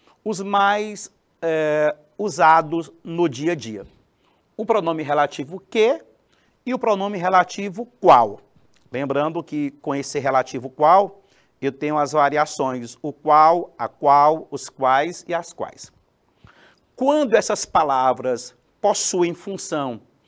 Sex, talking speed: male, 120 wpm